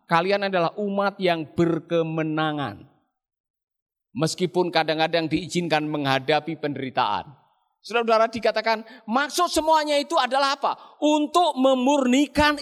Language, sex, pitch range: Indonesian, male, 170-235 Hz